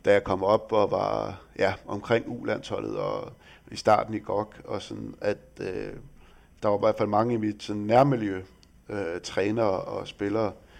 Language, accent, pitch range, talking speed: Danish, native, 95-120 Hz, 180 wpm